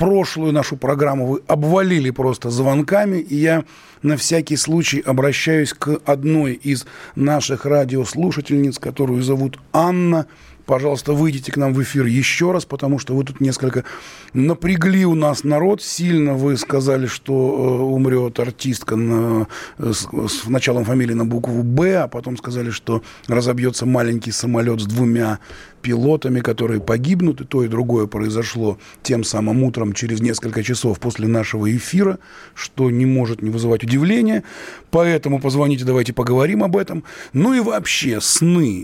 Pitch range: 120-150 Hz